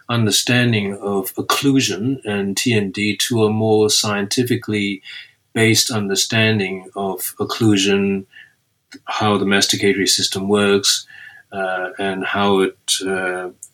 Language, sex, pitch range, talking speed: English, male, 100-130 Hz, 100 wpm